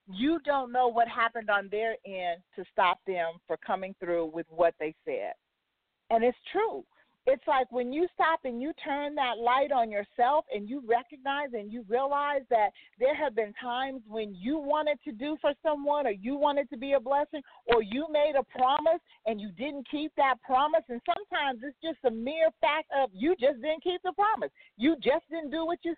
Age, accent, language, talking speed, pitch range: 40-59, American, English, 205 wpm, 235-315 Hz